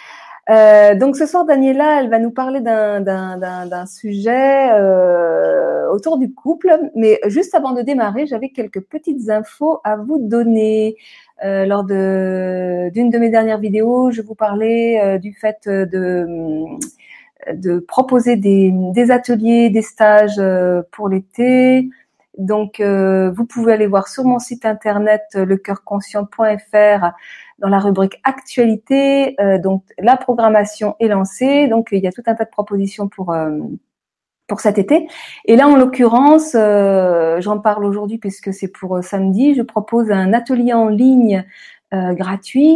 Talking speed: 155 wpm